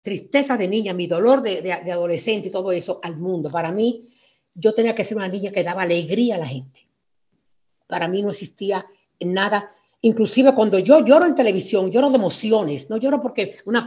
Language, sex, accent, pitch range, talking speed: Spanish, female, American, 180-230 Hz, 200 wpm